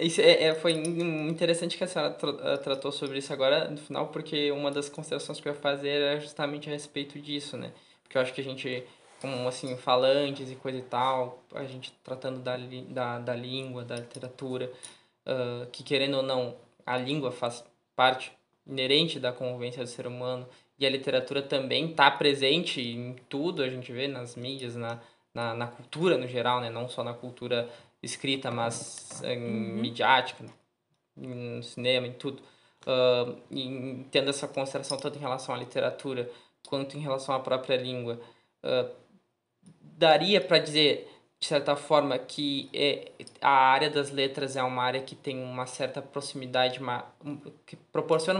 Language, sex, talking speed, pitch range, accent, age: Portuguese, male, 165 wpm, 125-145 Hz, Brazilian, 10-29